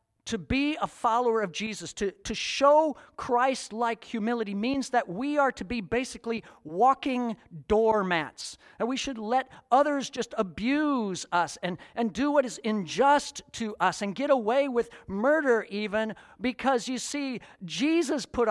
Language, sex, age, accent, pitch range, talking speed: English, male, 50-69, American, 175-250 Hz, 150 wpm